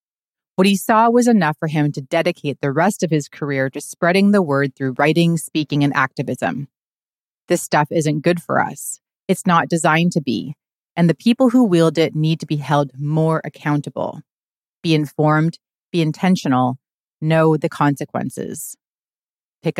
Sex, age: female, 30-49